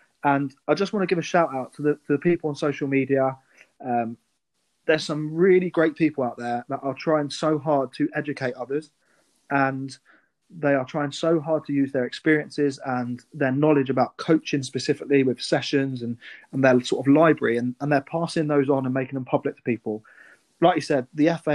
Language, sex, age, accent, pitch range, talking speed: English, male, 20-39, British, 130-155 Hz, 205 wpm